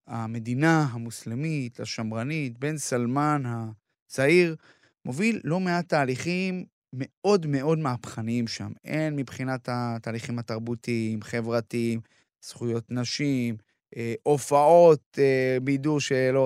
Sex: male